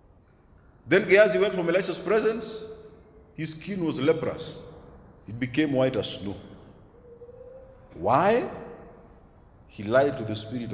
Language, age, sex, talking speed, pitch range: English, 50-69, male, 115 wpm, 130-215 Hz